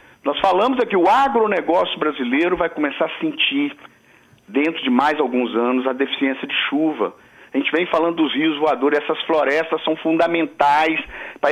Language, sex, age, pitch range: Portuguese, male, 50-69, 140-215 Hz